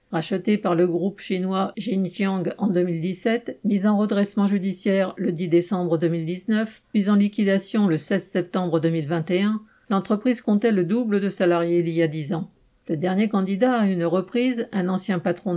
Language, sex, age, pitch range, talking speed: French, female, 50-69, 175-205 Hz, 165 wpm